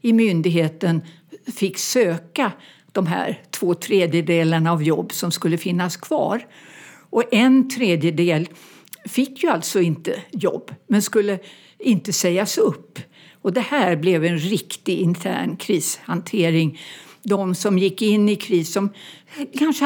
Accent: native